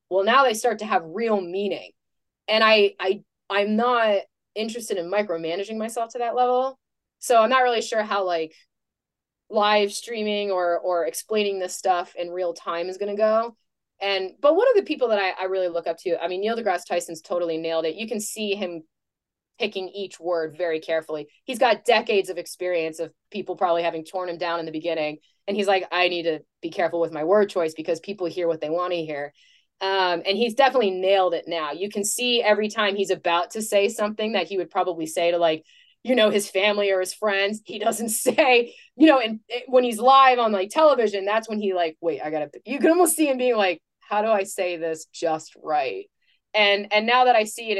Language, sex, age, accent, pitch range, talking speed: English, female, 20-39, American, 170-220 Hz, 225 wpm